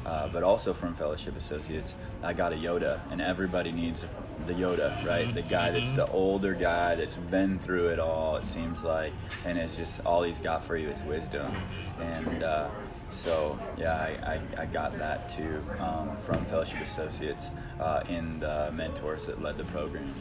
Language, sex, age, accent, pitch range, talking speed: English, male, 20-39, American, 80-95 Hz, 185 wpm